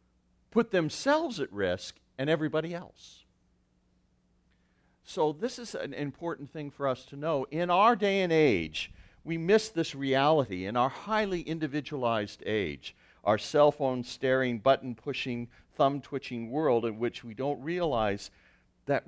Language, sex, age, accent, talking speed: English, male, 60-79, American, 135 wpm